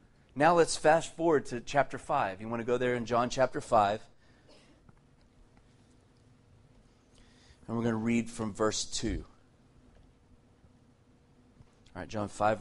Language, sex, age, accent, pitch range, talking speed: English, male, 30-49, American, 115-135 Hz, 130 wpm